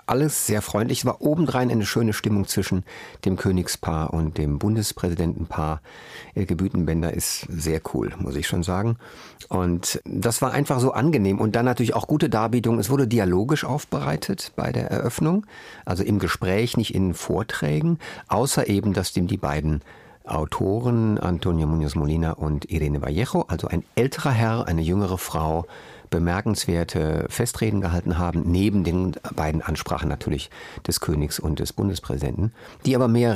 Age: 50-69